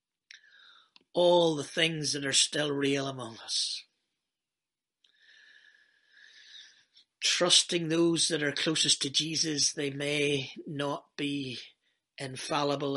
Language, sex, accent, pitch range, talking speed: English, male, British, 145-185 Hz, 95 wpm